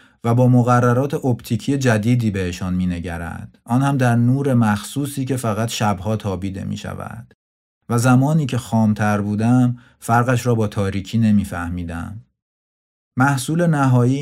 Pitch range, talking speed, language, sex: 100-125 Hz, 135 wpm, Persian, male